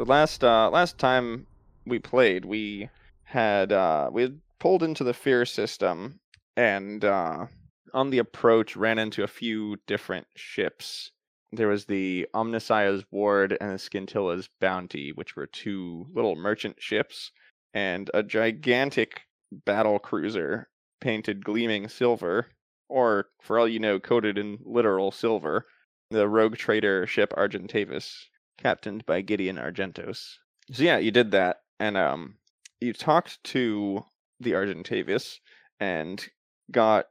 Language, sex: English, male